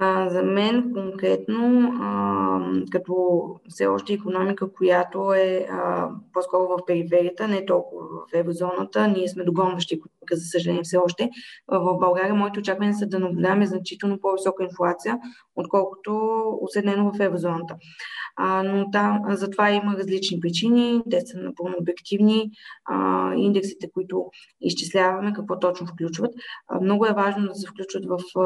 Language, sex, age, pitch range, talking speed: Bulgarian, female, 20-39, 175-205 Hz, 125 wpm